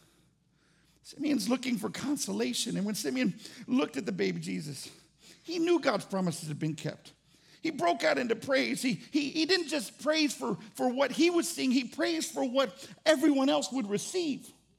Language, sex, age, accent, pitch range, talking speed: English, male, 50-69, American, 145-215 Hz, 180 wpm